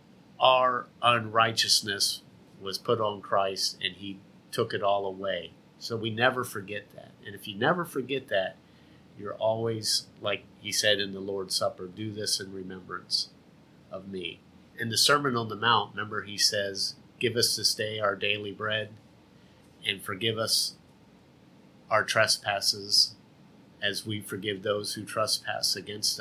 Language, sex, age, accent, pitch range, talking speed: English, male, 50-69, American, 100-115 Hz, 150 wpm